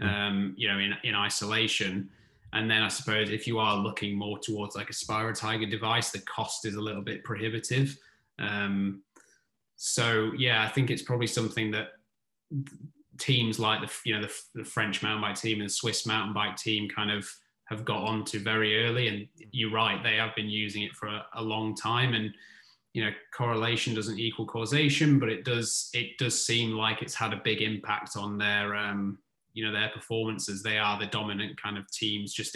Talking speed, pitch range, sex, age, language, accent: 195 wpm, 105-110 Hz, male, 20-39, French, British